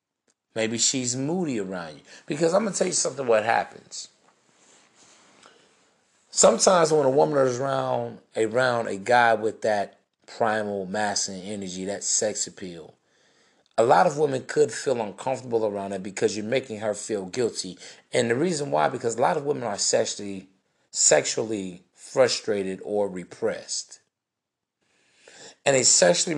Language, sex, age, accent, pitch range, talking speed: English, male, 30-49, American, 105-135 Hz, 150 wpm